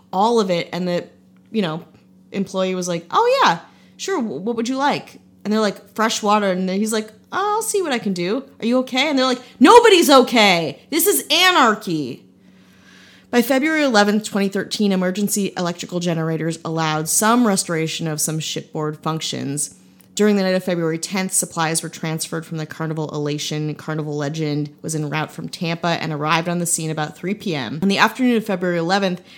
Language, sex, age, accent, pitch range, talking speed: English, female, 30-49, American, 155-205 Hz, 190 wpm